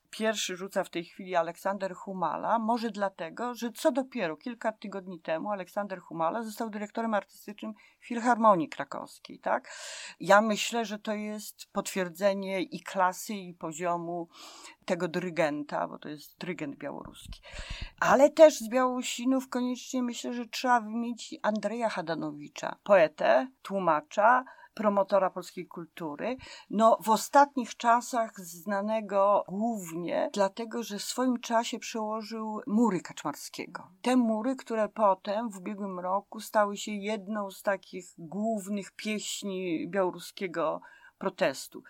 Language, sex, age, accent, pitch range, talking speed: Polish, female, 40-59, native, 185-235 Hz, 125 wpm